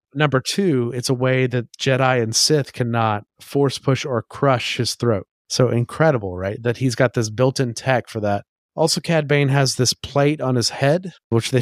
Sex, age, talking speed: male, 30-49, 195 wpm